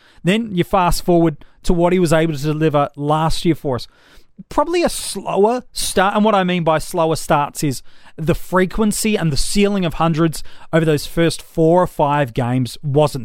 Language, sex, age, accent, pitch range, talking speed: English, male, 30-49, Australian, 140-180 Hz, 190 wpm